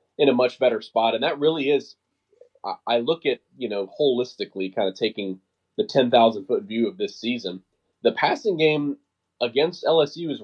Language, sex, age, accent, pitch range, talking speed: English, male, 20-39, American, 100-140 Hz, 170 wpm